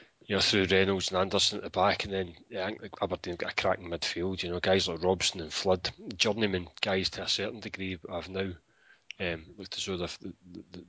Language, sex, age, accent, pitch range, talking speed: English, male, 30-49, British, 90-105 Hz, 220 wpm